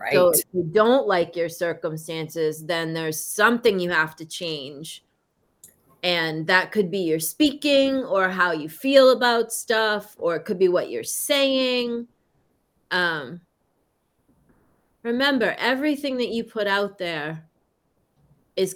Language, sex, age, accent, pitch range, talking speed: English, female, 30-49, American, 175-215 Hz, 135 wpm